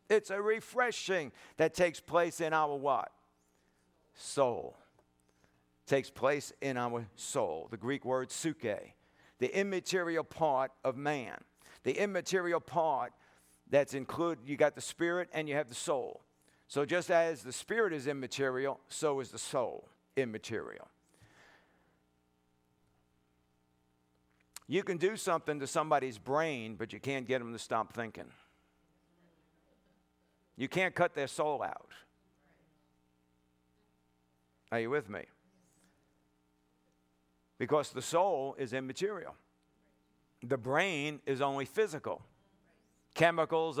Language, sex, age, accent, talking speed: English, male, 50-69, American, 120 wpm